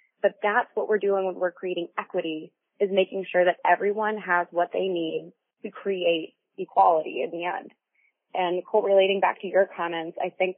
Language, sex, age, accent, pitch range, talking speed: English, female, 20-39, American, 175-210 Hz, 180 wpm